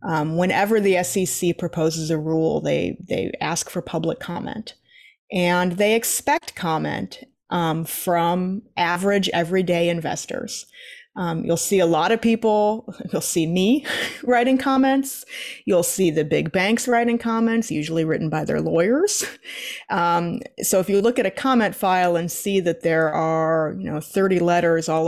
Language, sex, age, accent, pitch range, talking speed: English, female, 30-49, American, 170-230 Hz, 155 wpm